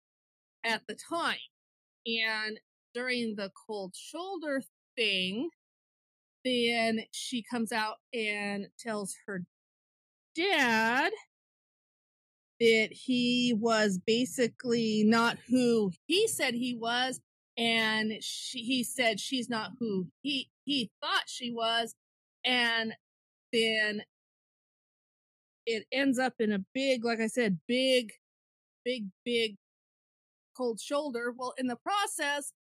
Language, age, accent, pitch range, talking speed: English, 40-59, American, 225-275 Hz, 105 wpm